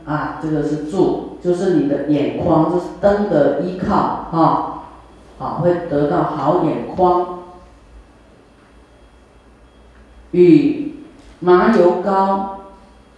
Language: Chinese